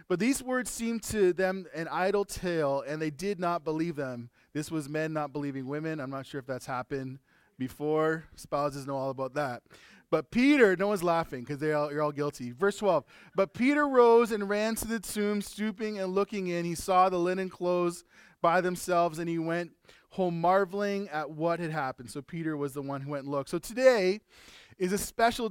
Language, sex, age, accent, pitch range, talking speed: English, male, 20-39, American, 165-215 Hz, 200 wpm